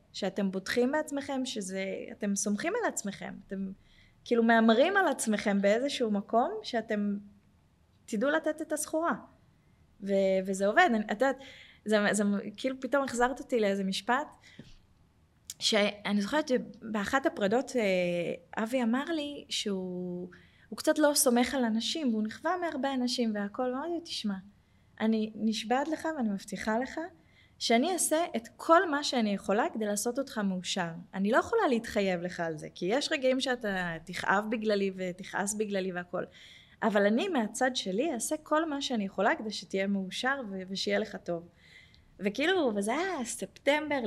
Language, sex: Hebrew, female